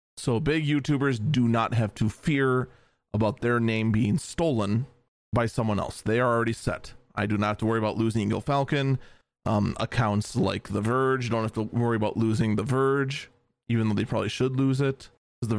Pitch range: 110-135 Hz